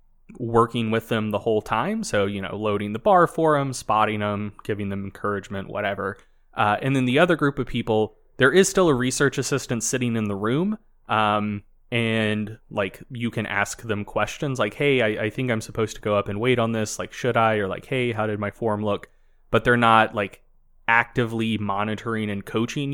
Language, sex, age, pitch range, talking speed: English, male, 20-39, 105-130 Hz, 205 wpm